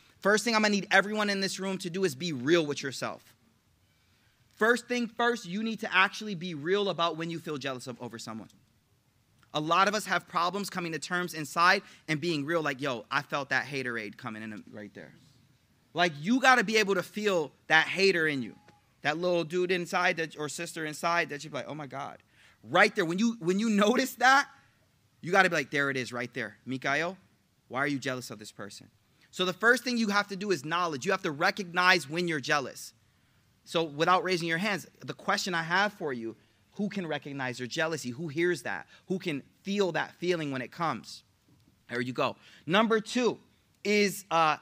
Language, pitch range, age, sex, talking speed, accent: English, 130-195 Hz, 30-49, male, 220 wpm, American